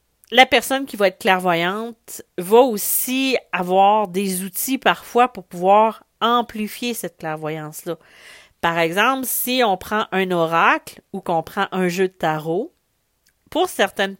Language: French